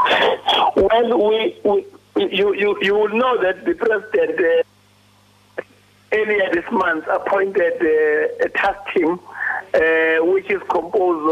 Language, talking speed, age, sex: English, 120 wpm, 60-79, male